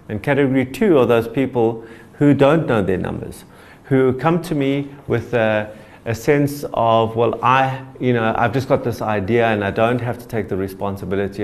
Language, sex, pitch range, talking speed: English, male, 105-130 Hz, 195 wpm